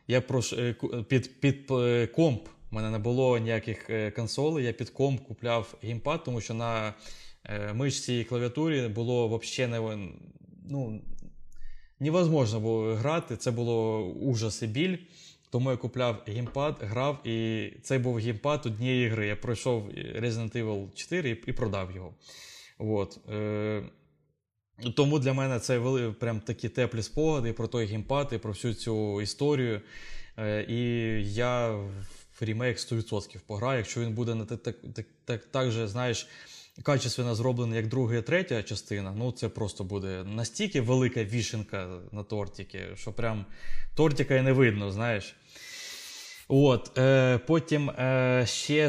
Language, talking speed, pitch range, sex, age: Ukrainian, 130 wpm, 110-130 Hz, male, 20-39